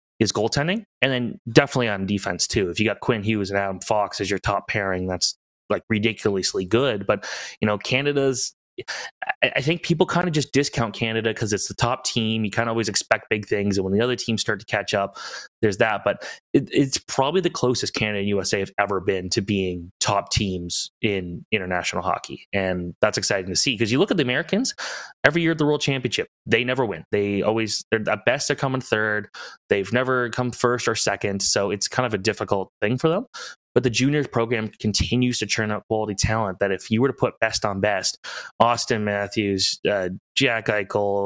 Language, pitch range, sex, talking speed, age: English, 100-135 Hz, male, 210 wpm, 20-39